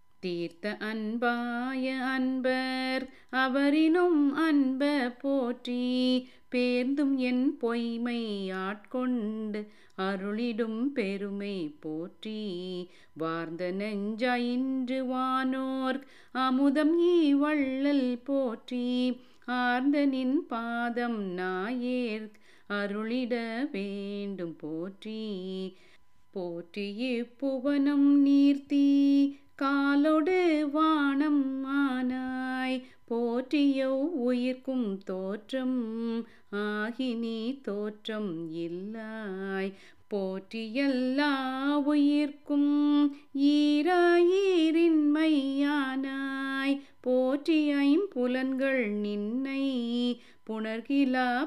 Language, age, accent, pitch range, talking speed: Tamil, 30-49, native, 215-280 Hz, 50 wpm